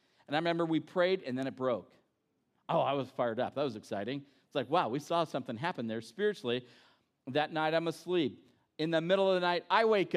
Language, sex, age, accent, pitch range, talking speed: English, male, 50-69, American, 145-195 Hz, 225 wpm